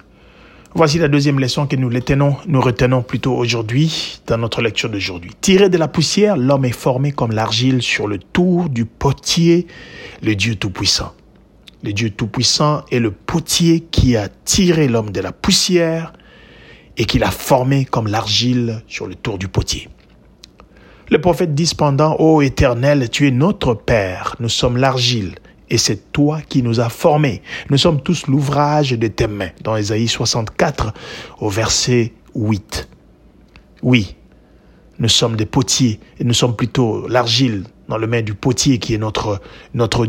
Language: French